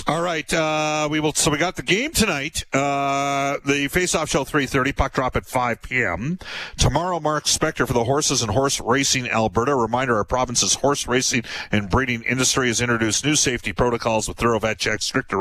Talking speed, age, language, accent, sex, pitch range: 200 wpm, 40-59, English, American, male, 125-150 Hz